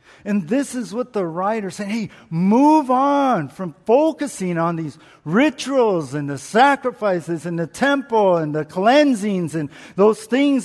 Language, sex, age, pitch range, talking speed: English, male, 50-69, 155-225 Hz, 150 wpm